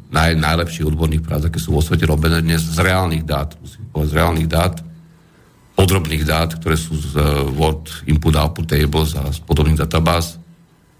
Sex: male